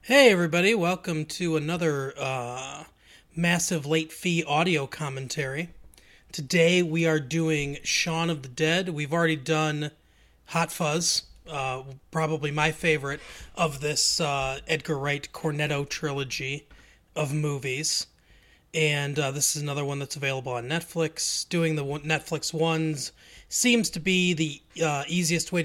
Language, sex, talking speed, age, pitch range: English, male, 135 wpm, 30-49, 130-165 Hz